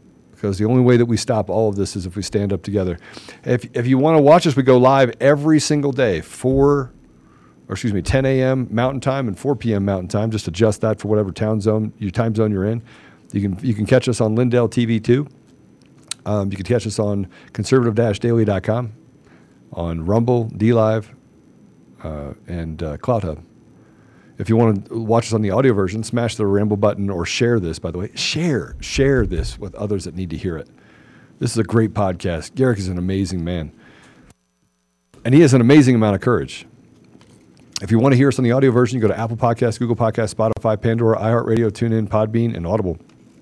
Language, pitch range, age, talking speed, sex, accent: English, 100-120 Hz, 50-69, 210 wpm, male, American